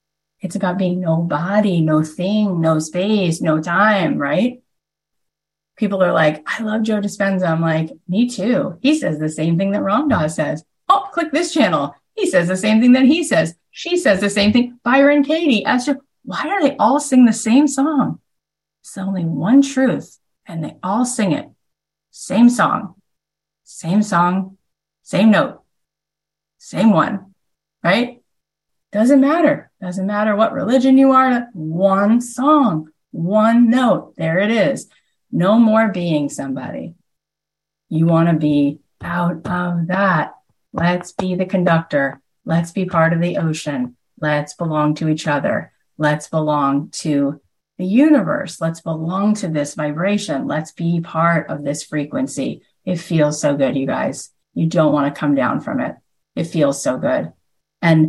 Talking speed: 160 wpm